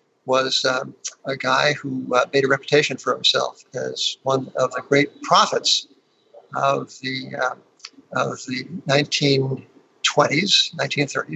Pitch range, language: 130-150 Hz, English